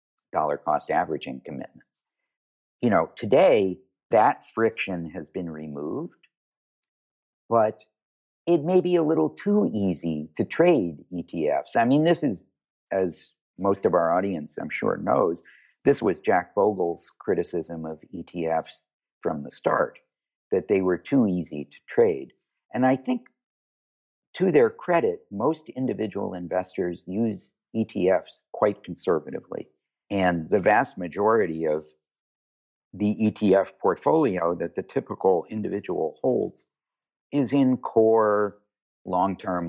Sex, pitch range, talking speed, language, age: male, 80-115 Hz, 120 wpm, English, 50-69